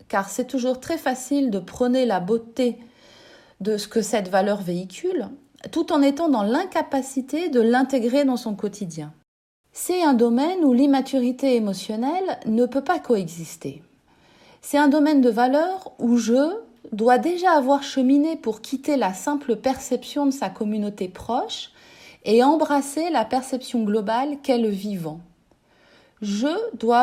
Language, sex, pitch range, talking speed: French, female, 225-290 Hz, 145 wpm